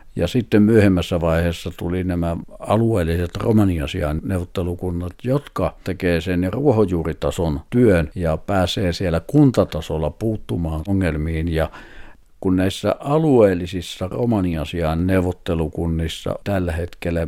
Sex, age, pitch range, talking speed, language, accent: male, 60-79, 85-100 Hz, 90 wpm, Finnish, native